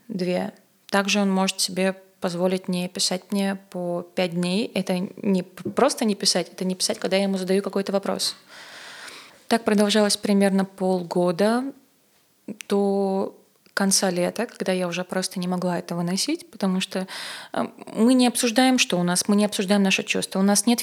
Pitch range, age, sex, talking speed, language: 185-215 Hz, 20-39, female, 165 wpm, Russian